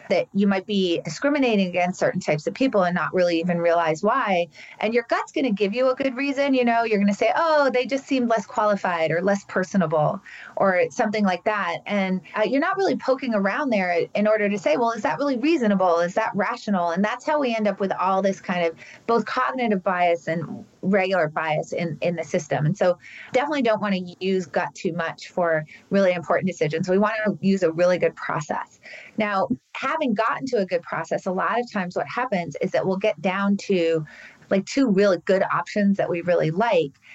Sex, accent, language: female, American, English